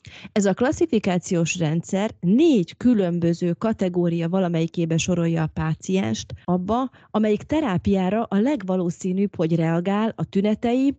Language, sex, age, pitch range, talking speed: Hungarian, female, 30-49, 165-210 Hz, 110 wpm